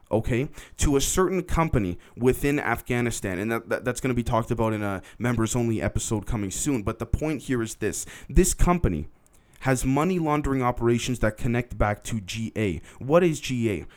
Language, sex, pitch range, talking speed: English, male, 110-145 Hz, 185 wpm